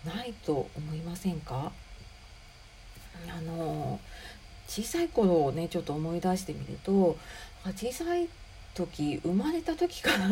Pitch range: 160-225 Hz